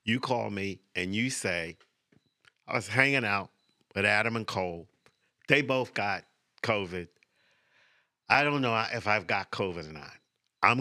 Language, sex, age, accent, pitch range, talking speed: English, male, 50-69, American, 95-115 Hz, 155 wpm